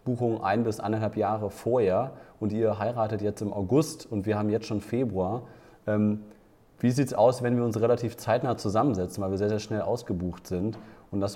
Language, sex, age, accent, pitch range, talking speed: German, male, 30-49, German, 100-120 Hz, 200 wpm